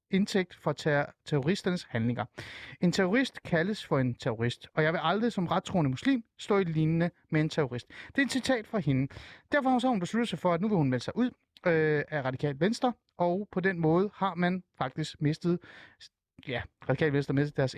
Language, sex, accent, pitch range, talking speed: Danish, male, native, 130-185 Hz, 205 wpm